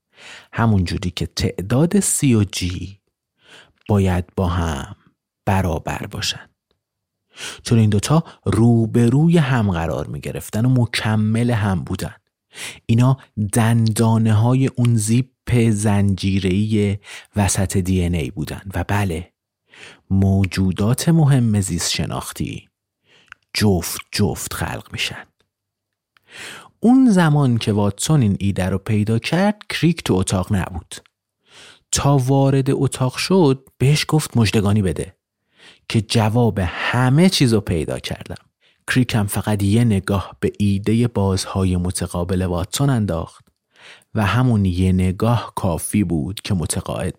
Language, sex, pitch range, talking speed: Persian, male, 95-120 Hz, 115 wpm